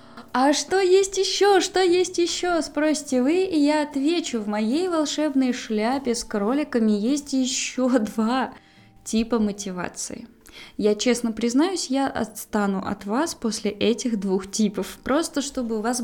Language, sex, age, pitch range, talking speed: Russian, female, 20-39, 205-270 Hz, 140 wpm